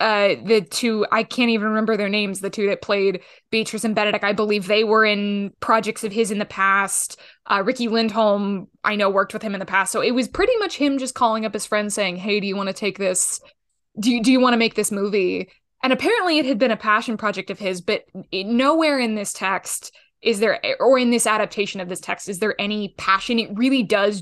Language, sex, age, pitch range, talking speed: English, female, 20-39, 200-245 Hz, 235 wpm